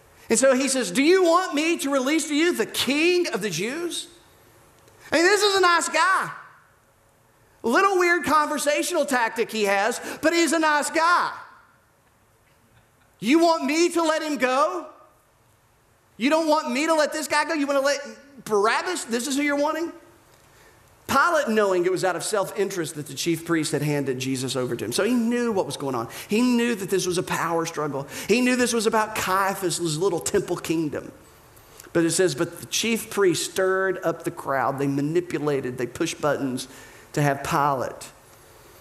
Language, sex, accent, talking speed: English, male, American, 190 wpm